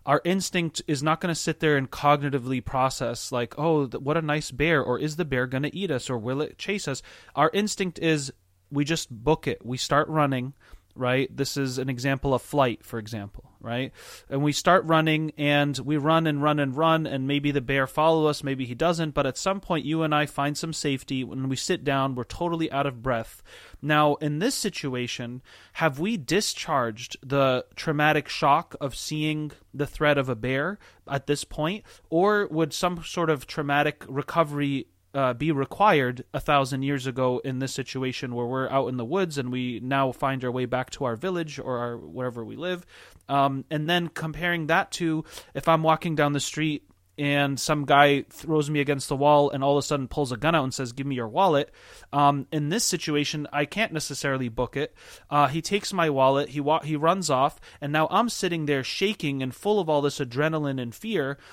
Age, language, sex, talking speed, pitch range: 30-49, English, male, 210 wpm, 130-160 Hz